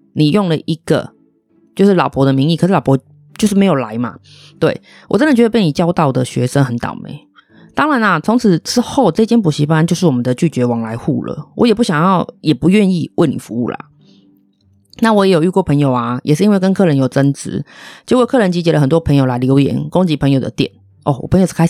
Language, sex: Chinese, female